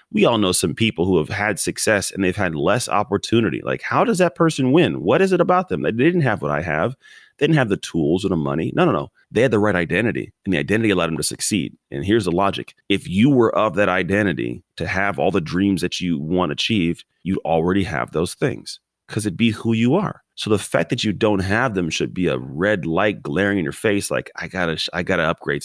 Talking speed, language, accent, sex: 250 wpm, English, American, male